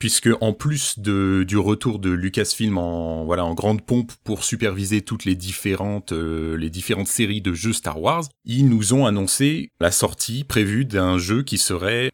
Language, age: French, 30-49